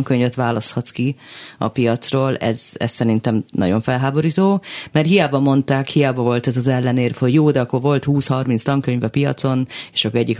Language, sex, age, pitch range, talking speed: Hungarian, female, 30-49, 120-145 Hz, 175 wpm